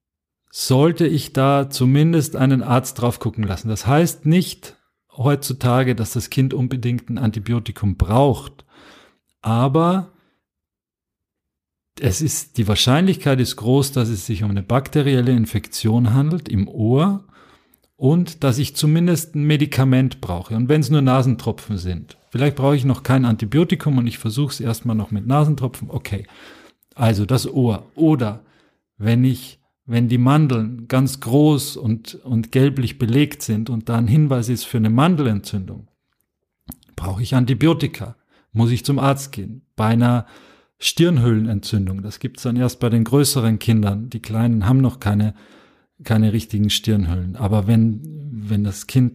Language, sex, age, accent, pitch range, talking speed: German, male, 40-59, German, 110-140 Hz, 145 wpm